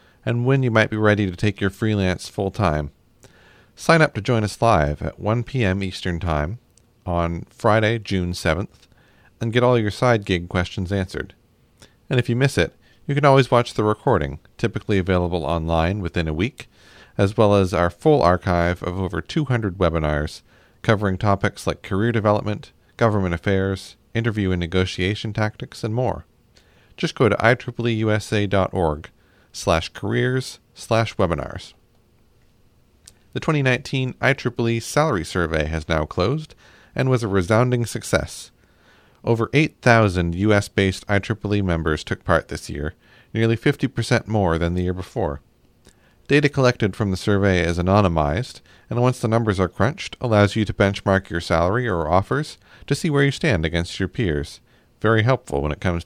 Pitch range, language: 90-120 Hz, English